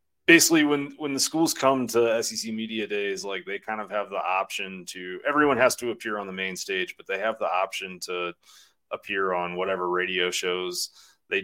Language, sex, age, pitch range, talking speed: English, male, 30-49, 90-130 Hz, 200 wpm